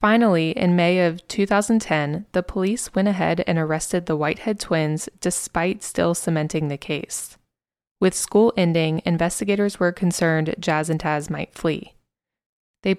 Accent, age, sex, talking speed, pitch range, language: American, 20-39, female, 145 wpm, 160-200 Hz, English